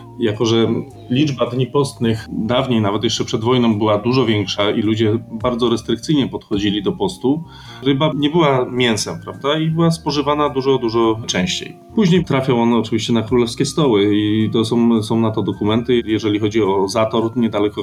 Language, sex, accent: Polish, male, native